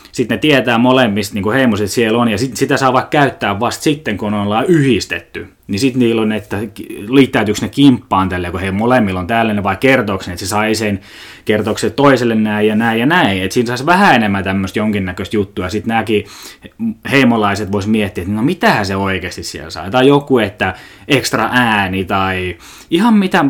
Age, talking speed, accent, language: 20-39, 185 wpm, native, Finnish